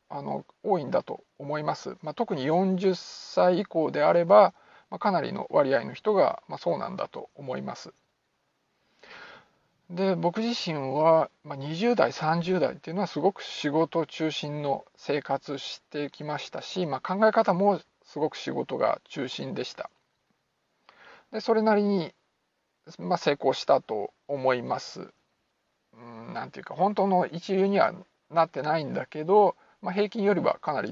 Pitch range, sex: 150-195 Hz, male